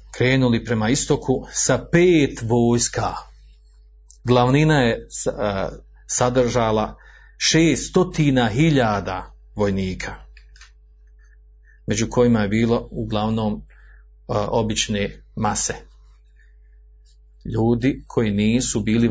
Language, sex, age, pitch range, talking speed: Croatian, male, 40-59, 105-125 Hz, 70 wpm